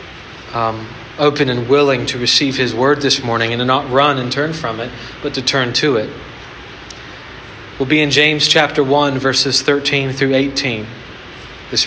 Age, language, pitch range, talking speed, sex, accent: 40-59, English, 125-160 Hz, 170 wpm, male, American